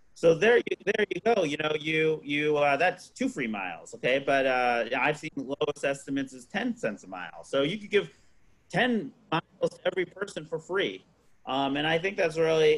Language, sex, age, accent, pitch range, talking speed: English, male, 30-49, American, 120-165 Hz, 205 wpm